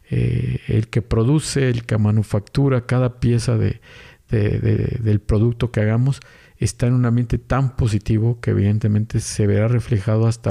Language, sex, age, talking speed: Spanish, male, 50-69, 145 wpm